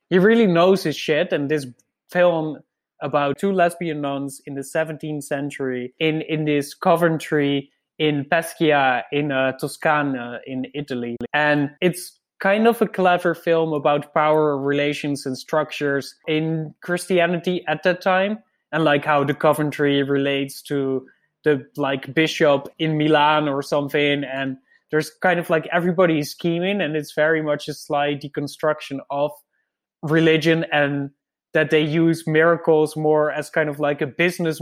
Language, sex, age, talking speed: English, male, 20-39, 150 wpm